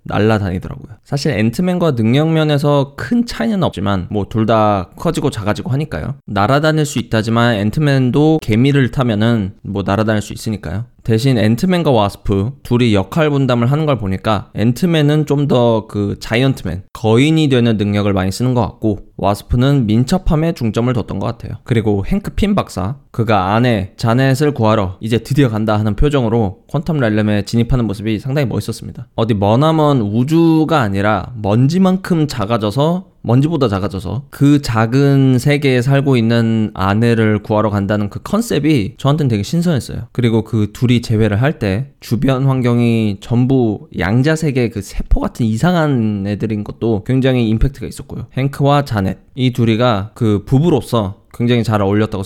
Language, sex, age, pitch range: Korean, male, 20-39, 105-140 Hz